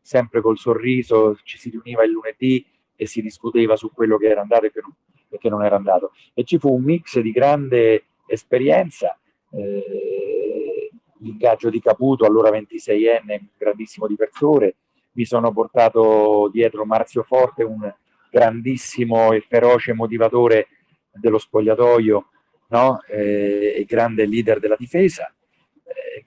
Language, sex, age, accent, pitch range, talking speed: Italian, male, 40-59, native, 110-125 Hz, 130 wpm